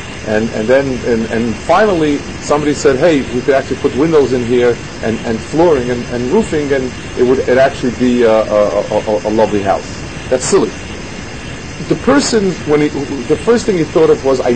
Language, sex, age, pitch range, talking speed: English, male, 40-59, 115-155 Hz, 200 wpm